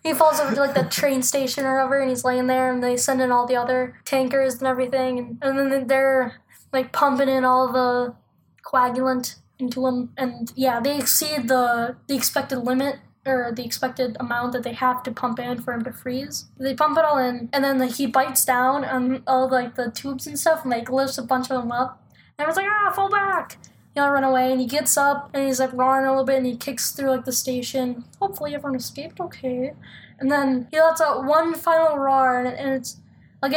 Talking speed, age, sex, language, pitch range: 225 wpm, 10-29, female, English, 250-280 Hz